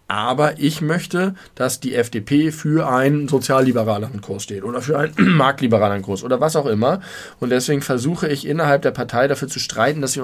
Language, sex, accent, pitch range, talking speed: German, male, German, 115-145 Hz, 190 wpm